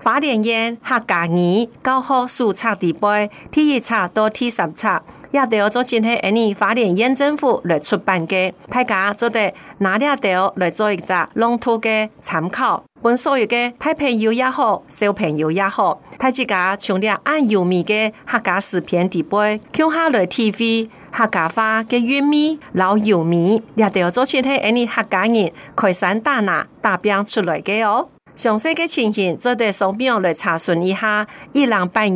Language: Chinese